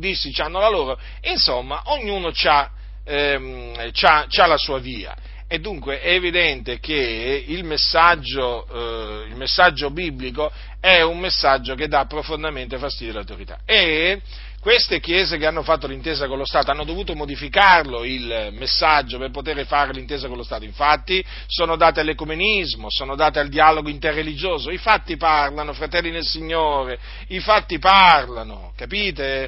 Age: 40-59